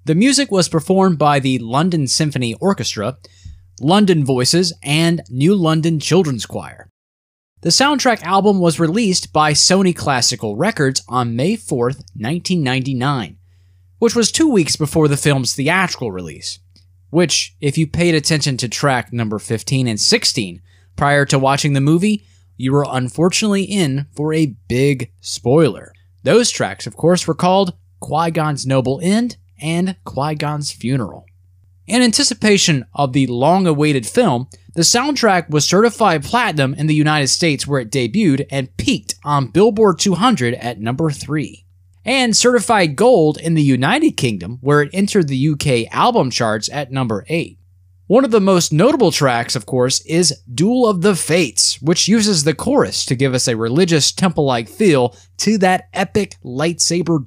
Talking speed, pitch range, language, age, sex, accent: 150 wpm, 120-180 Hz, English, 20-39, male, American